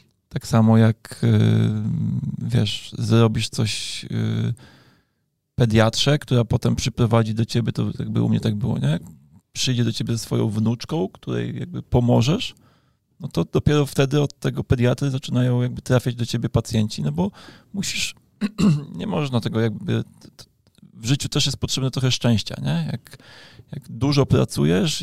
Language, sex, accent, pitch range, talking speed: Polish, male, native, 110-135 Hz, 145 wpm